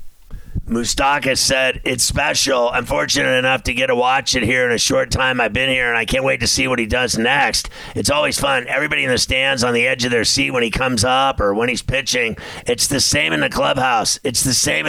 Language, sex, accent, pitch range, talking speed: English, male, American, 110-135 Hz, 240 wpm